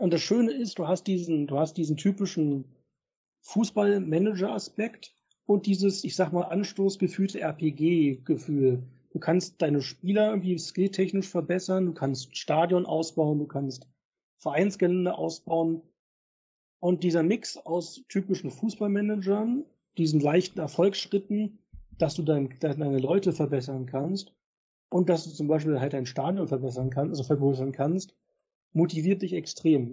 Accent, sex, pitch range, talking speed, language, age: German, male, 145-185 Hz, 140 wpm, German, 40-59